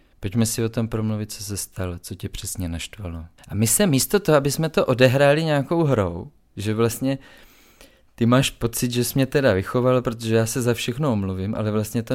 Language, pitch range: Czech, 105-125 Hz